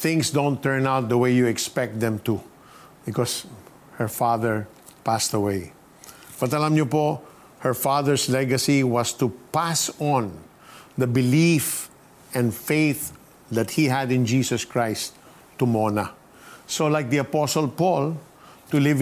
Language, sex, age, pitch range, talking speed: Filipino, male, 50-69, 120-155 Hz, 135 wpm